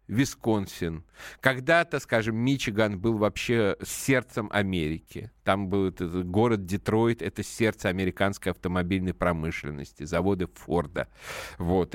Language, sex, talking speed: Russian, male, 100 wpm